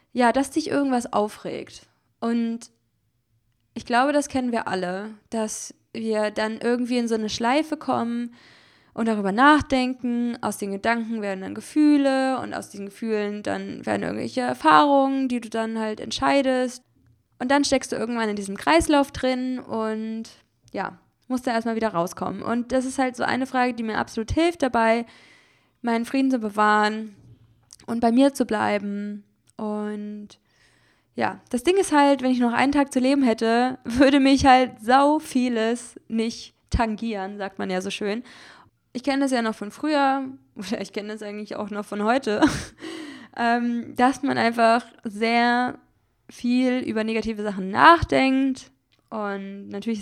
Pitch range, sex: 210-260 Hz, female